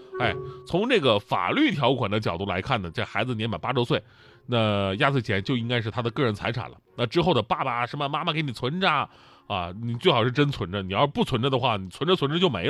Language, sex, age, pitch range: Chinese, male, 30-49, 110-150 Hz